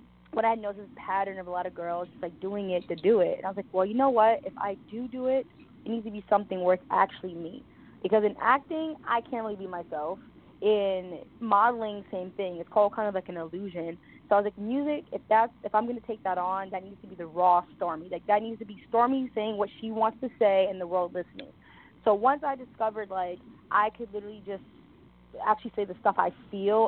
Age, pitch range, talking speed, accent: 20-39, 185-230 Hz, 250 wpm, American